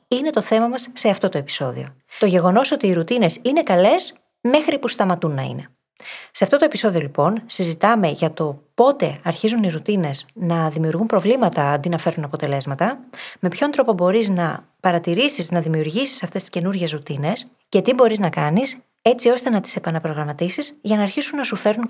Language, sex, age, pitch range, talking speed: Greek, female, 20-39, 165-230 Hz, 185 wpm